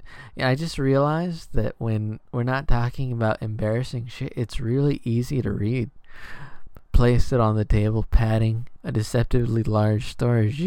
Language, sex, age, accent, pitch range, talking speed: English, male, 20-39, American, 110-130 Hz, 145 wpm